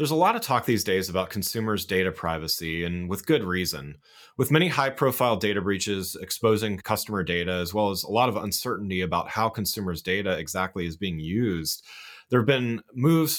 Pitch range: 90-115 Hz